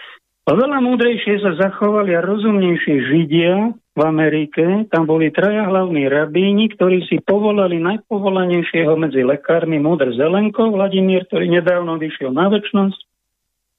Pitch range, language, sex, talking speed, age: 155-200 Hz, Slovak, male, 120 wpm, 50-69